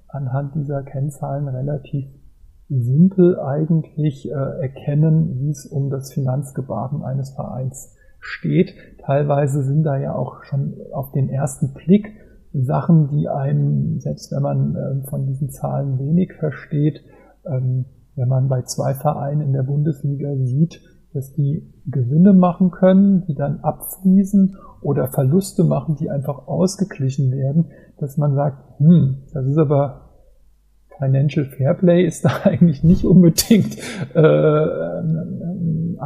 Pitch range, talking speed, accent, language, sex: 135-160 Hz, 130 wpm, German, German, male